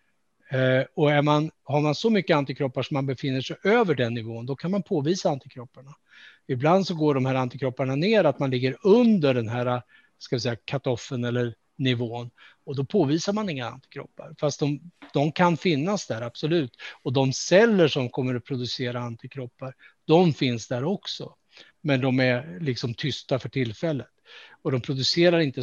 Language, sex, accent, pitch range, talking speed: Swedish, male, Norwegian, 130-165 Hz, 175 wpm